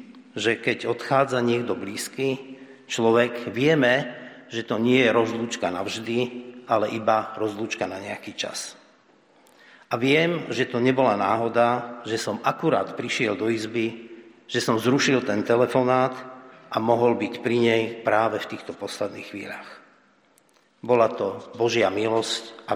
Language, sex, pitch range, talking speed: Slovak, male, 115-130 Hz, 135 wpm